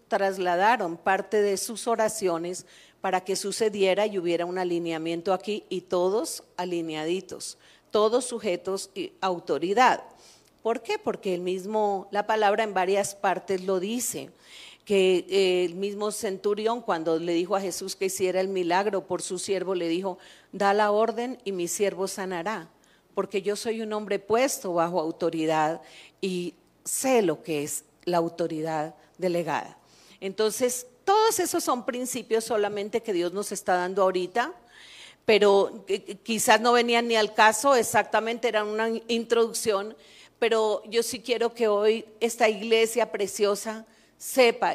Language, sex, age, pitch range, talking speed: Spanish, female, 40-59, 185-225 Hz, 140 wpm